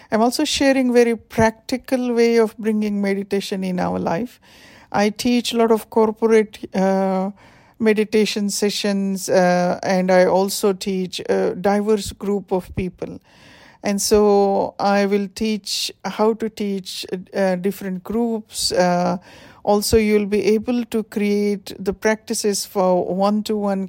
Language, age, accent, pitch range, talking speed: English, 50-69, Indian, 185-220 Hz, 135 wpm